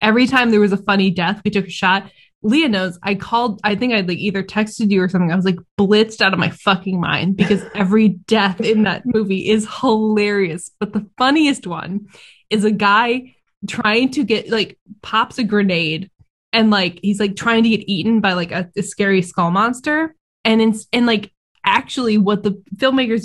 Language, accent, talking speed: English, American, 200 wpm